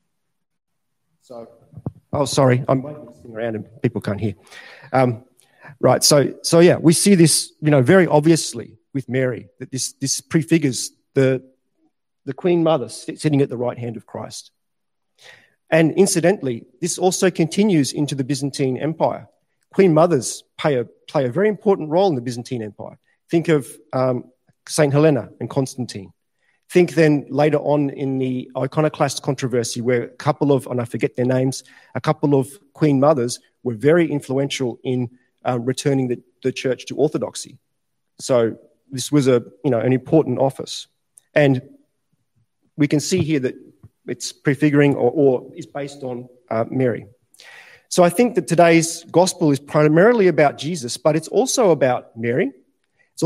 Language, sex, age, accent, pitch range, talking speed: English, male, 40-59, Australian, 125-160 Hz, 160 wpm